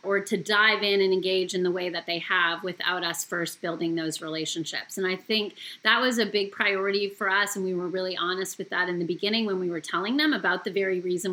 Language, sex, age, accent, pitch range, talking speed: English, female, 30-49, American, 185-230 Hz, 250 wpm